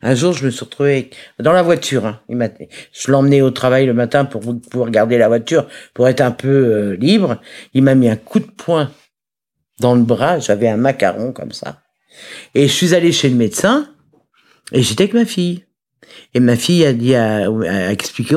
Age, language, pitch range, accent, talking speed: 50-69, French, 125-165 Hz, French, 190 wpm